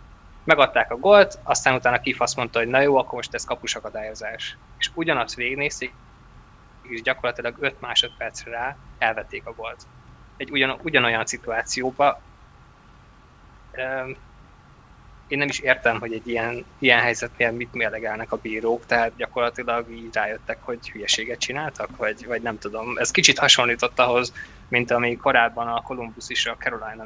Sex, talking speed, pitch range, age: male, 140 wpm, 115-130 Hz, 20-39